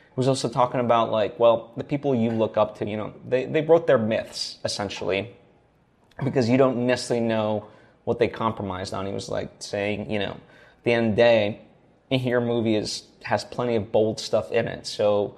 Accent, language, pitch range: American, English, 105-120 Hz